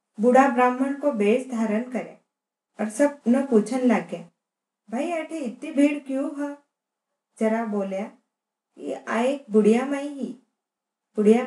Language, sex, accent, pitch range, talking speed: Hindi, female, native, 220-265 Hz, 120 wpm